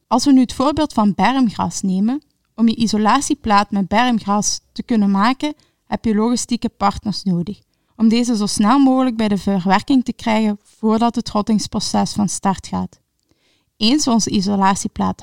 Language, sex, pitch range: Dutch, female, 200-250 Hz